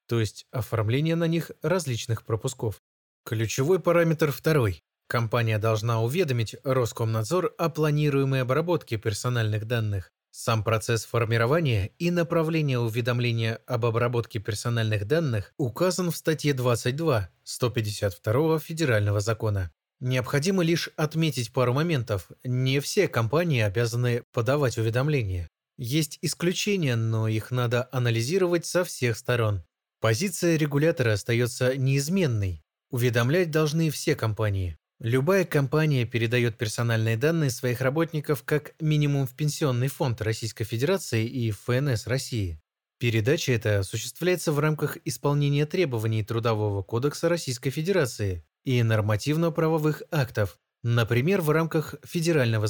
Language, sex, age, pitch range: Russian, male, 20-39, 115-155 Hz